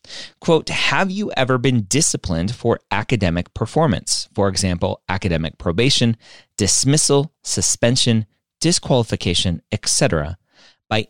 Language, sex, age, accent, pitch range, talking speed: English, male, 30-49, American, 100-140 Hz, 95 wpm